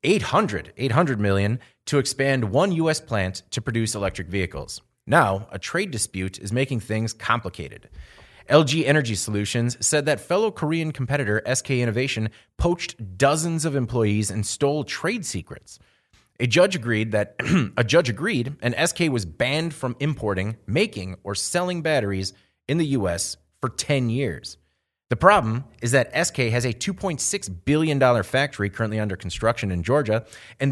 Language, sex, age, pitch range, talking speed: English, male, 30-49, 105-145 Hz, 150 wpm